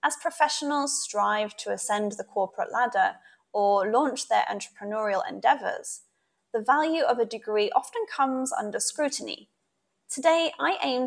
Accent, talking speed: British, 135 wpm